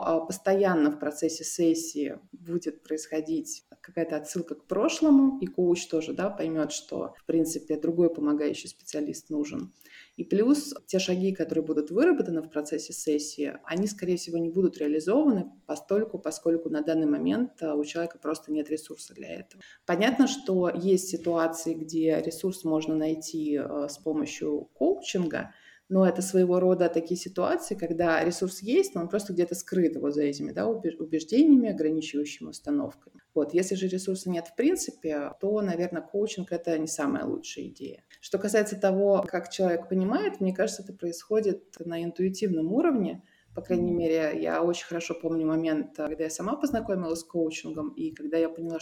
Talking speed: 150 wpm